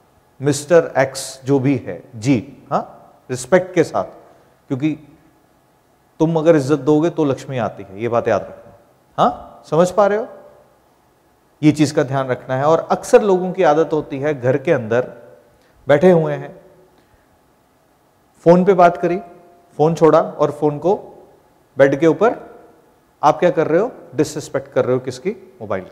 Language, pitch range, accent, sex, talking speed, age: Hindi, 135-180 Hz, native, male, 160 wpm, 40-59